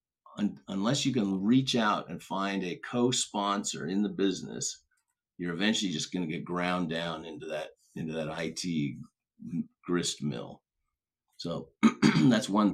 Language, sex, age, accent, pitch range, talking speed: English, male, 50-69, American, 90-120 Hz, 135 wpm